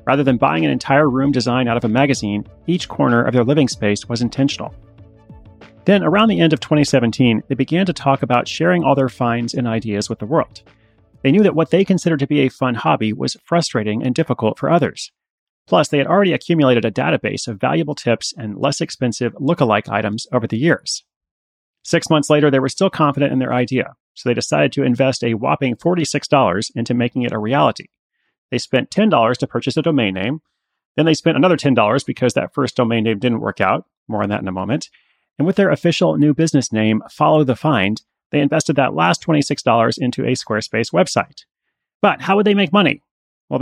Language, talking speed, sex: English, 205 wpm, male